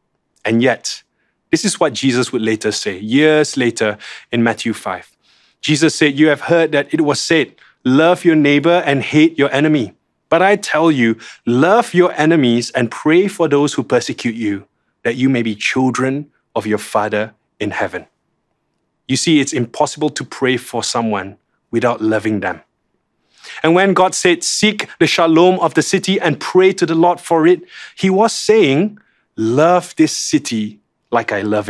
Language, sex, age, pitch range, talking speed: English, male, 20-39, 120-165 Hz, 170 wpm